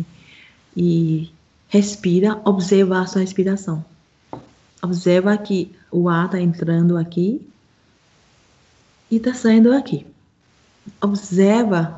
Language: Portuguese